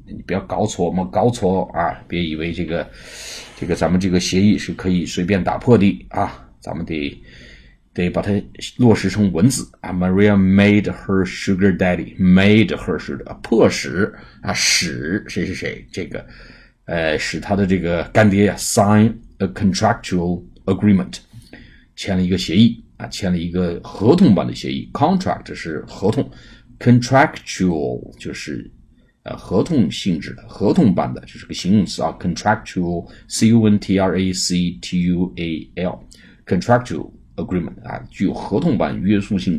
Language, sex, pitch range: Chinese, male, 85-105 Hz